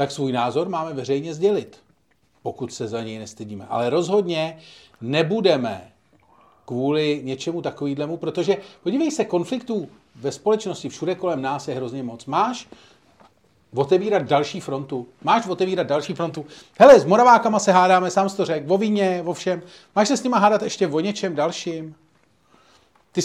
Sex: male